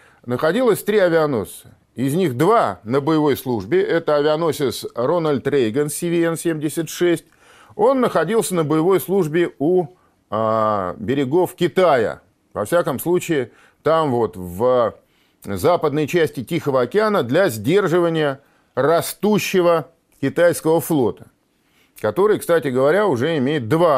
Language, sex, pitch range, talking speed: Russian, male, 130-175 Hz, 110 wpm